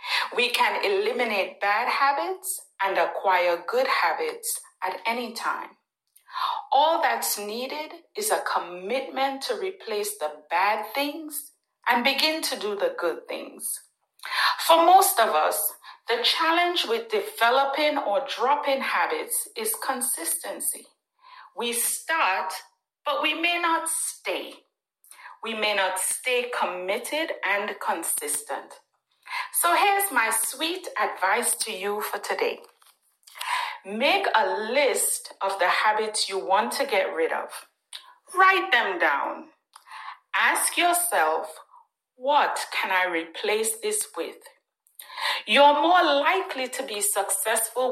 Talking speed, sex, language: 120 wpm, female, English